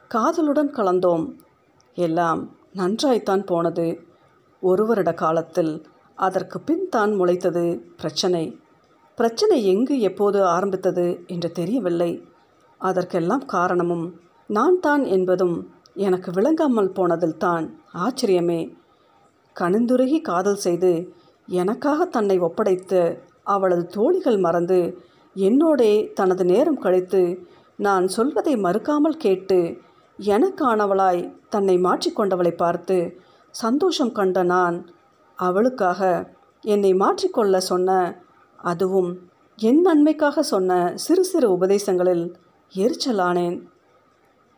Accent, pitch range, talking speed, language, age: native, 180-230 Hz, 85 wpm, Tamil, 50-69